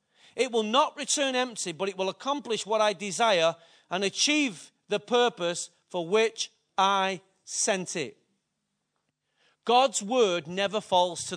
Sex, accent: male, British